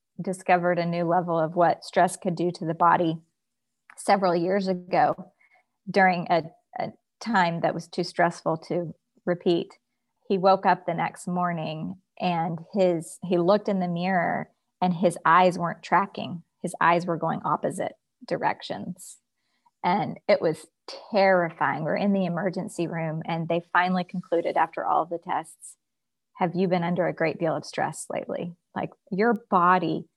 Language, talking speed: English, 160 wpm